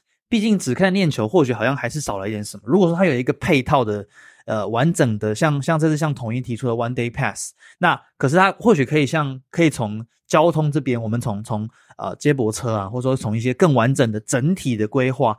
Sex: male